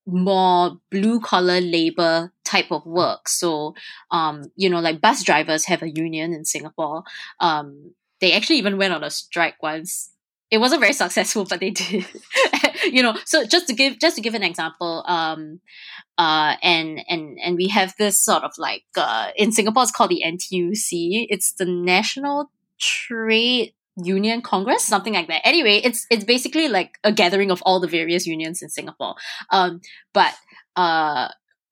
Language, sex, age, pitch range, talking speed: English, female, 20-39, 170-220 Hz, 170 wpm